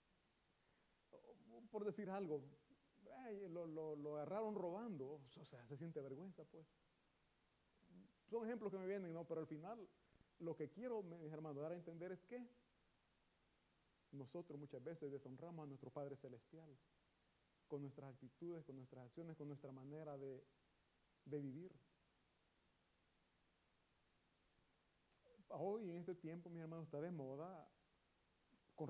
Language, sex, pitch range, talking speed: Italian, male, 135-175 Hz, 135 wpm